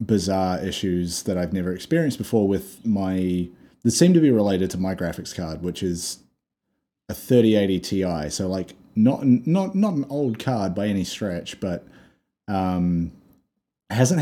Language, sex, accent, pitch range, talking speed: English, male, Australian, 90-110 Hz, 155 wpm